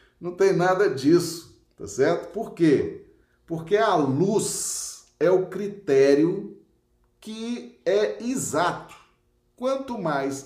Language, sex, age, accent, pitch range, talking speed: Portuguese, male, 40-59, Brazilian, 160-250 Hz, 110 wpm